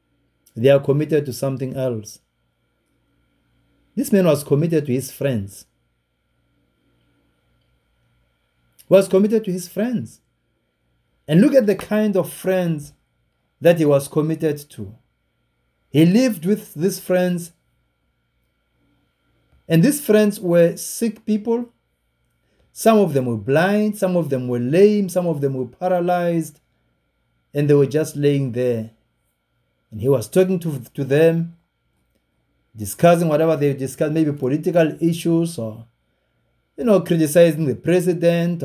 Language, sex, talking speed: English, male, 130 wpm